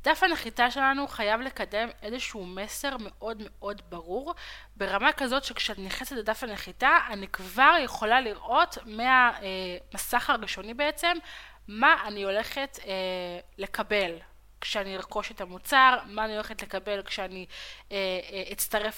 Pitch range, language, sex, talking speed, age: 200-260 Hz, Hebrew, female, 125 wpm, 20-39